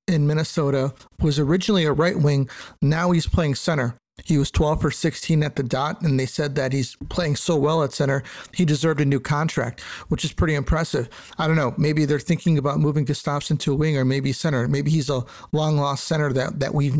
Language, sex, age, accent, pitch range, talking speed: English, male, 50-69, American, 130-155 Hz, 215 wpm